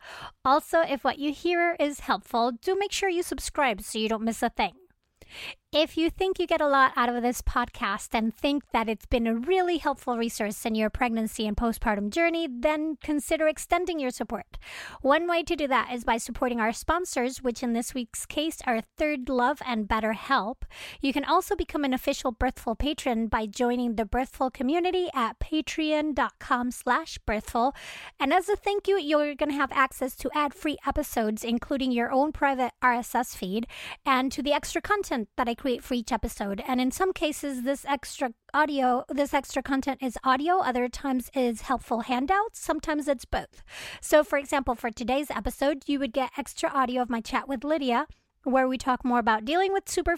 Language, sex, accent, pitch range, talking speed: English, female, American, 245-300 Hz, 195 wpm